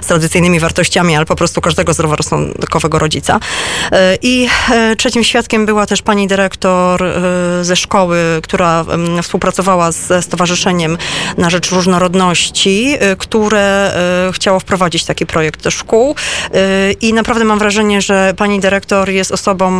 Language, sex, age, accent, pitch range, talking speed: Polish, female, 30-49, native, 180-205 Hz, 125 wpm